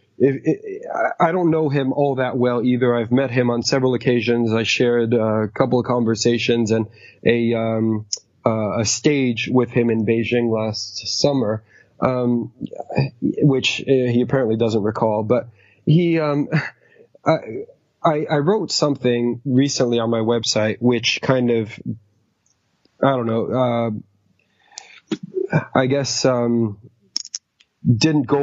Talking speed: 130 wpm